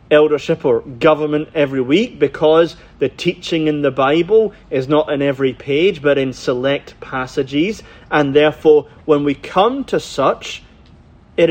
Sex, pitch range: male, 125-185 Hz